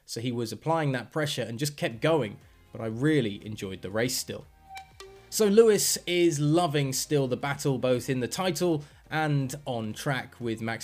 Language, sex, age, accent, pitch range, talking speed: English, male, 20-39, British, 115-150 Hz, 185 wpm